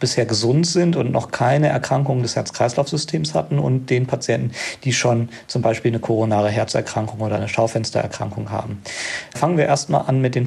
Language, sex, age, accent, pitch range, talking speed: German, male, 40-59, German, 115-140 Hz, 170 wpm